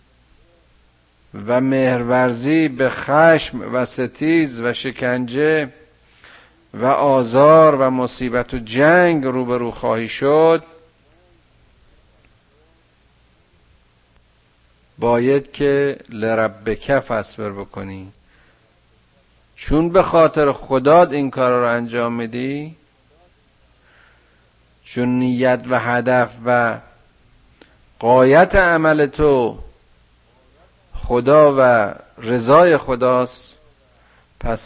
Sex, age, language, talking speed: male, 50-69, Persian, 80 wpm